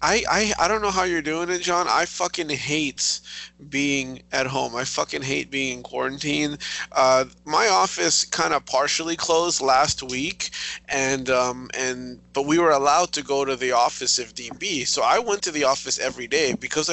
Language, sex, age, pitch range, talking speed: English, male, 20-39, 140-175 Hz, 190 wpm